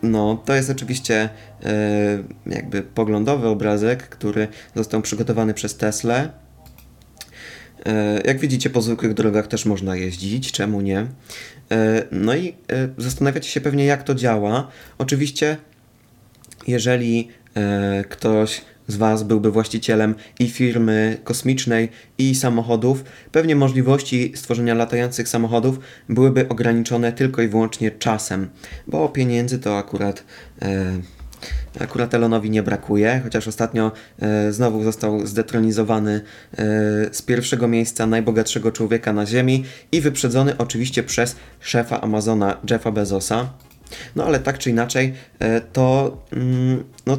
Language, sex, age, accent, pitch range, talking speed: Polish, male, 20-39, native, 110-130 Hz, 110 wpm